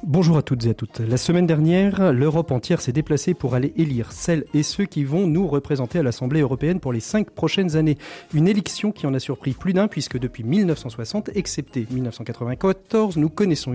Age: 40-59